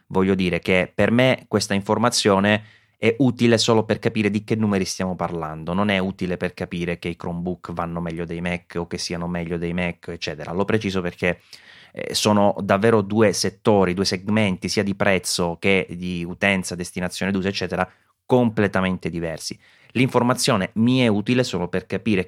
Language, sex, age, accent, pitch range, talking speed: Italian, male, 30-49, native, 90-110 Hz, 170 wpm